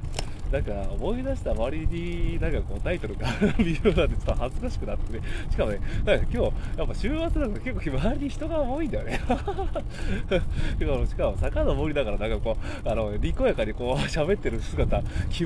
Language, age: Japanese, 20-39